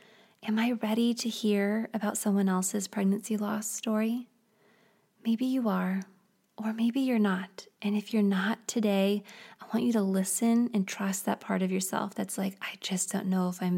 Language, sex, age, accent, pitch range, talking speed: English, female, 20-39, American, 195-225 Hz, 185 wpm